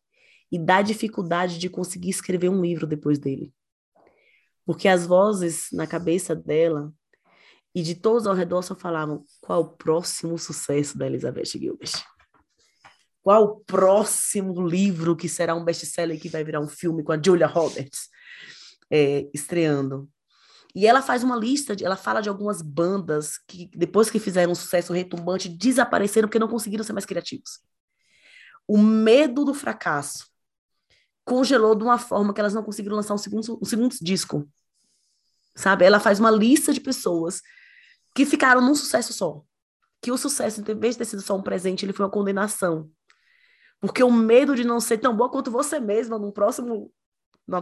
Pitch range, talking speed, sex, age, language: 170-220 Hz, 165 wpm, female, 20-39, Portuguese